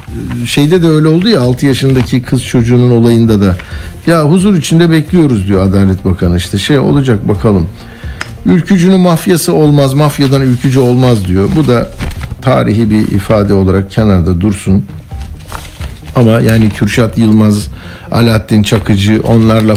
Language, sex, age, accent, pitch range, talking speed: Turkish, male, 60-79, native, 100-125 Hz, 135 wpm